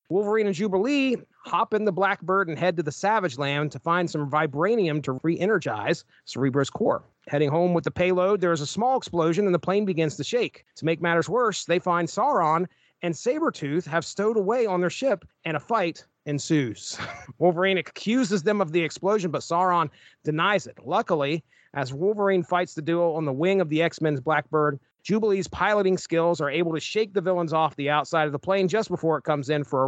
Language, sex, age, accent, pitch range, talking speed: English, male, 30-49, American, 150-195 Hz, 205 wpm